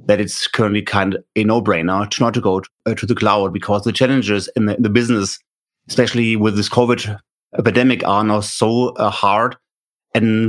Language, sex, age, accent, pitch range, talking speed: English, male, 30-49, German, 105-120 Hz, 195 wpm